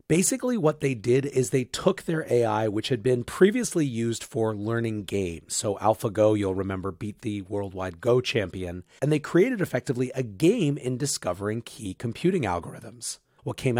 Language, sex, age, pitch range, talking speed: English, male, 30-49, 105-140 Hz, 170 wpm